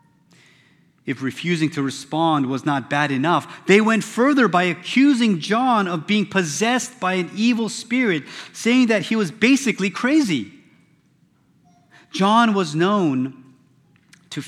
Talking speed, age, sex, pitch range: 130 wpm, 30-49, male, 135-190 Hz